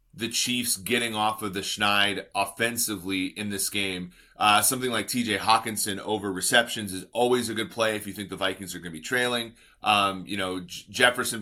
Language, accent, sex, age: English, American, male, 30-49